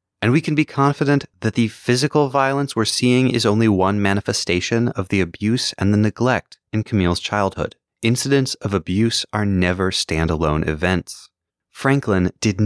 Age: 30-49